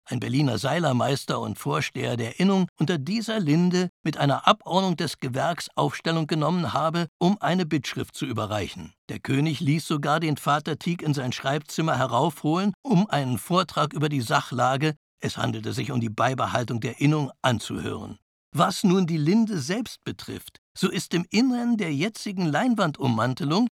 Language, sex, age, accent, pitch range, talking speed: German, male, 60-79, German, 130-180 Hz, 160 wpm